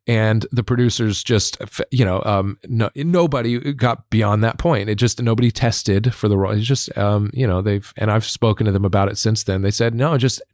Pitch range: 95-125 Hz